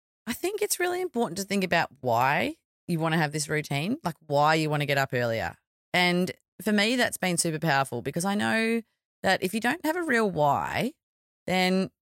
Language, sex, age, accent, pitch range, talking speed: English, female, 30-49, Australian, 135-195 Hz, 210 wpm